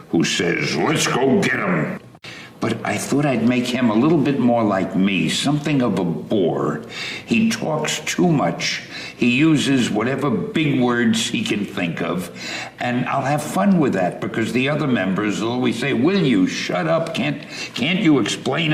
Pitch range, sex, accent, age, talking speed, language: 105-155 Hz, male, American, 60-79, 180 wpm, Danish